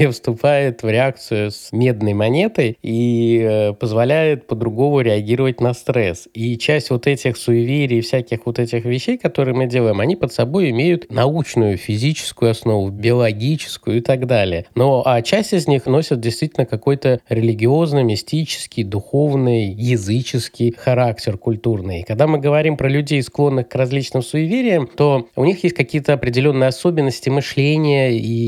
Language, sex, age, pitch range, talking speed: Russian, male, 20-39, 115-140 Hz, 145 wpm